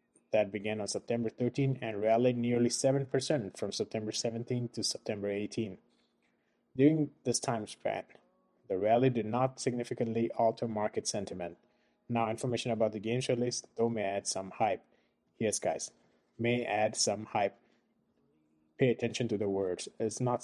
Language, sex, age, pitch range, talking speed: English, male, 20-39, 105-120 Hz, 155 wpm